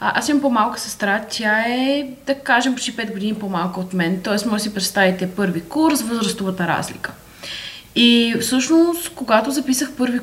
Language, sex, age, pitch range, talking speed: Bulgarian, female, 20-39, 195-235 Hz, 170 wpm